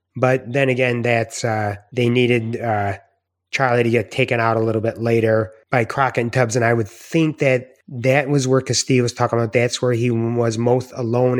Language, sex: English, male